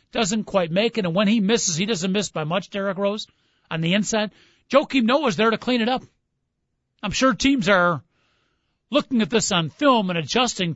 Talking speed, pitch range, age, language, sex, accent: 200 wpm, 165-225 Hz, 50-69, English, male, American